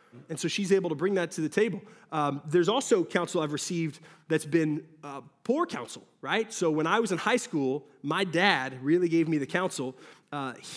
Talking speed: 205 wpm